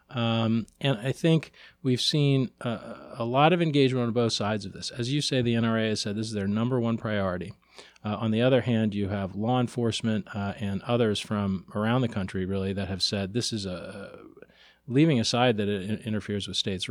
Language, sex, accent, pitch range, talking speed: English, male, American, 100-115 Hz, 210 wpm